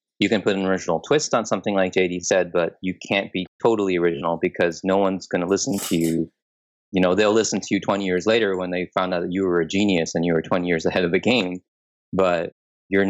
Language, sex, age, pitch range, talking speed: English, male, 20-39, 90-100 Hz, 250 wpm